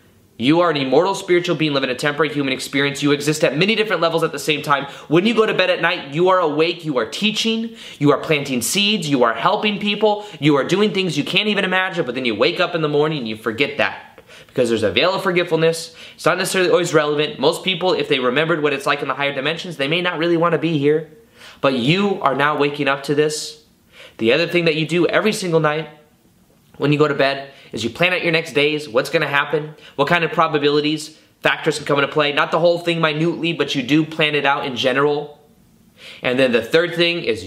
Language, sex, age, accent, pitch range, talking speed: English, male, 20-39, American, 145-175 Hz, 245 wpm